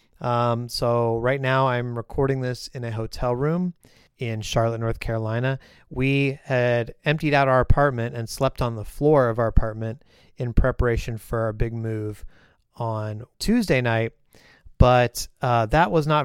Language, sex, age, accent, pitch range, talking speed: English, male, 30-49, American, 115-135 Hz, 160 wpm